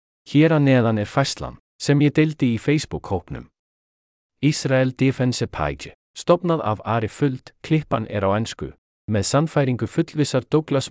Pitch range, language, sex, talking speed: 105-140 Hz, English, male, 130 wpm